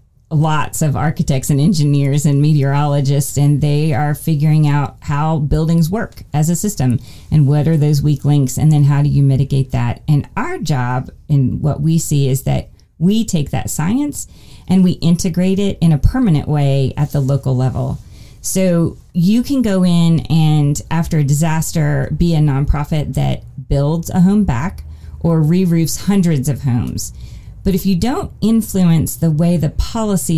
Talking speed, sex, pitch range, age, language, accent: 170 wpm, female, 140-170 Hz, 30-49, English, American